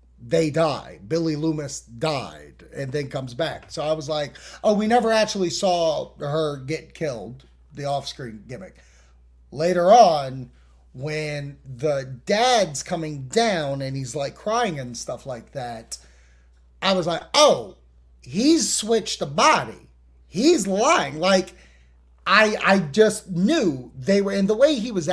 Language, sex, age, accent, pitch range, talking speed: English, male, 30-49, American, 135-195 Hz, 145 wpm